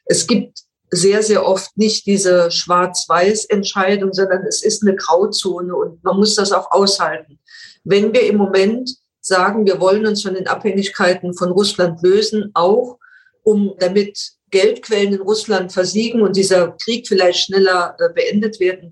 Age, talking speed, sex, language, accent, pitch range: 50-69, 150 wpm, female, German, German, 175-205 Hz